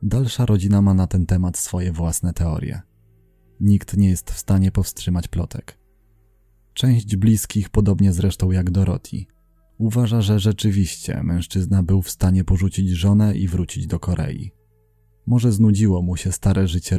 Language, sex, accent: Polish, male, native